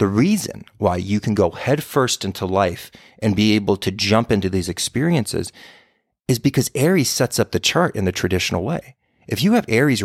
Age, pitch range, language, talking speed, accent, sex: 30-49, 100-140 Hz, English, 190 wpm, American, male